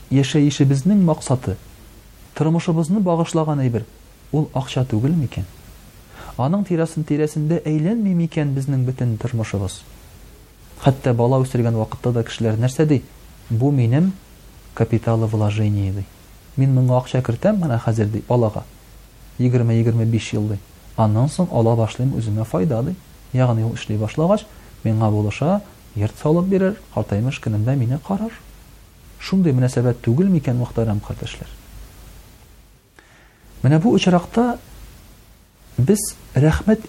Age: 30-49